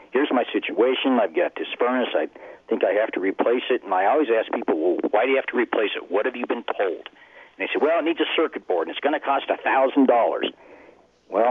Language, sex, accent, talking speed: English, male, American, 260 wpm